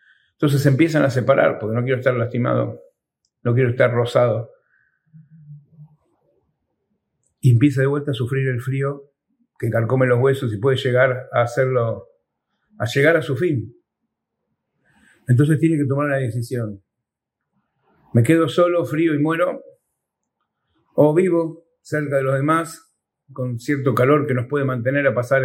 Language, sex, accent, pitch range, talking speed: Spanish, male, Argentinian, 125-150 Hz, 150 wpm